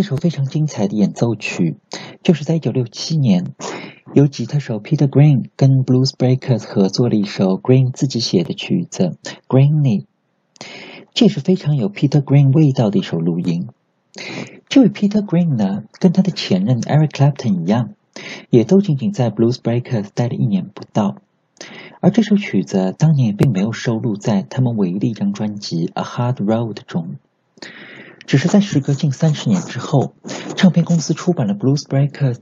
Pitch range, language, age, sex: 120-180 Hz, Chinese, 50-69, male